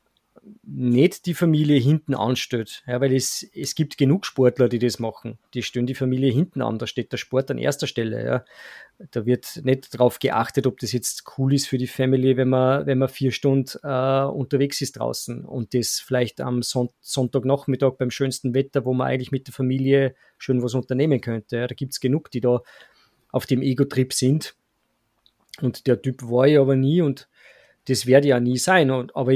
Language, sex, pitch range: German, male, 125-140 Hz